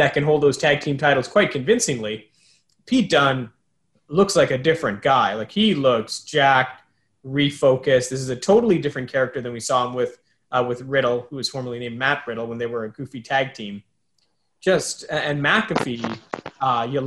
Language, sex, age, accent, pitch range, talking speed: English, male, 30-49, American, 125-160 Hz, 185 wpm